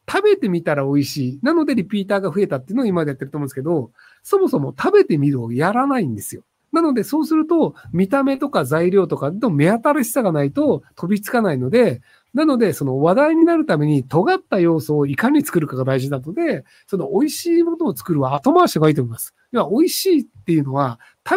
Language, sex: Japanese, male